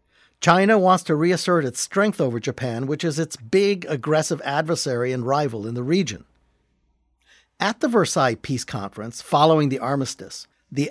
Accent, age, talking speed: American, 60-79, 155 wpm